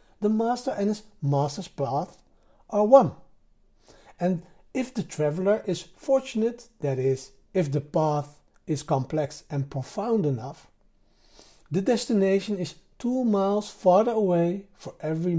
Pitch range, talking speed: 150-210 Hz, 130 wpm